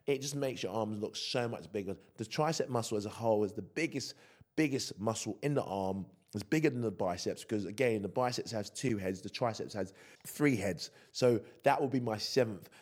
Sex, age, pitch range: male, 20-39, 100-125 Hz